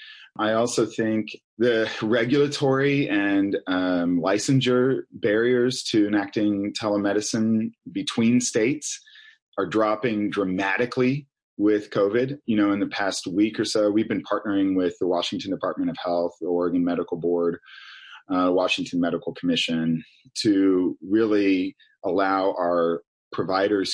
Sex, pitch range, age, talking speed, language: male, 95-125 Hz, 30-49, 125 wpm, English